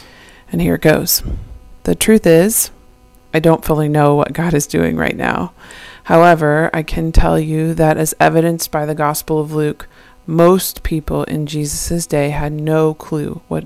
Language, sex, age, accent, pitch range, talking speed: English, female, 30-49, American, 150-165 Hz, 170 wpm